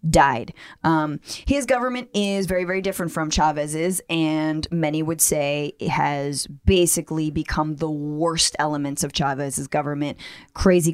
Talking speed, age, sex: 135 wpm, 20-39, female